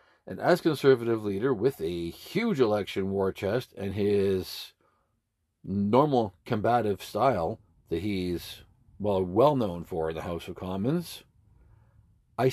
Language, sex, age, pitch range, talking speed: English, male, 50-69, 95-120 Hz, 130 wpm